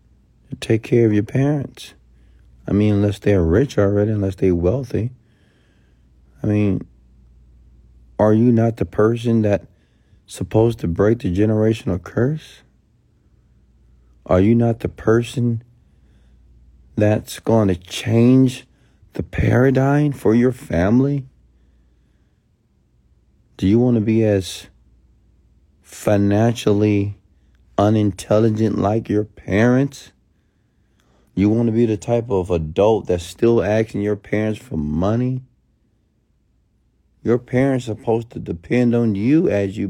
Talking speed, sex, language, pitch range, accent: 120 wpm, male, English, 90-115 Hz, American